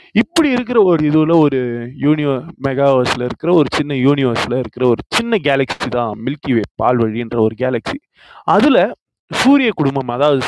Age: 20-39